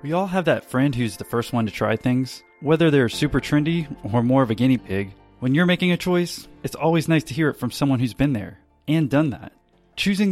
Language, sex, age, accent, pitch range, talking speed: English, male, 20-39, American, 115-160 Hz, 245 wpm